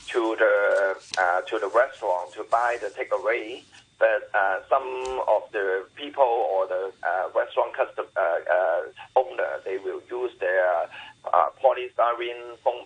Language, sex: English, male